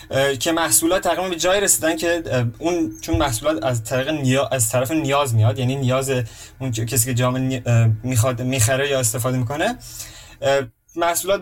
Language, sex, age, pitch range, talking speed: Persian, male, 20-39, 115-165 Hz, 140 wpm